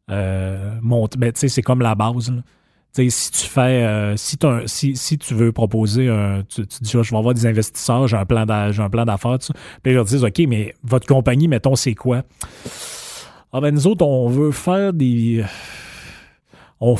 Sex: male